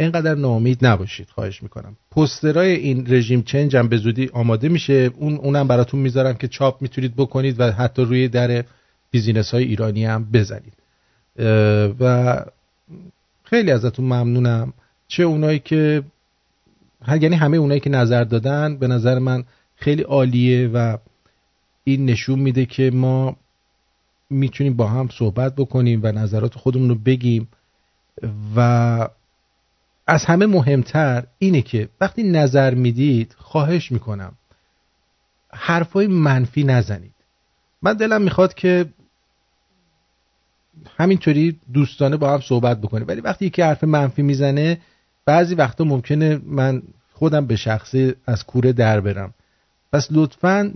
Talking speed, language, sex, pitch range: 130 wpm, English, male, 115-150 Hz